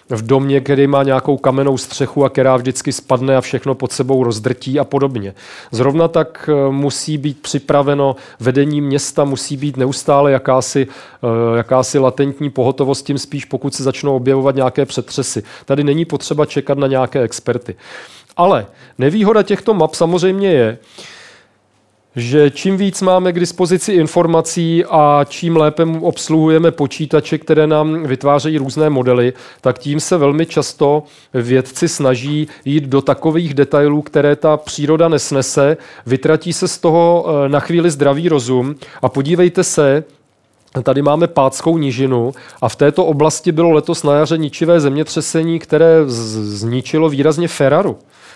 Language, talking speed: Czech, 140 wpm